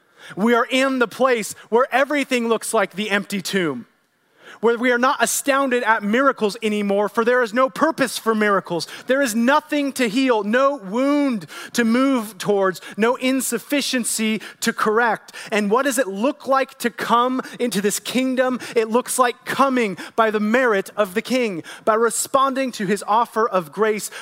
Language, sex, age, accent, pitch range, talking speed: English, male, 30-49, American, 150-240 Hz, 170 wpm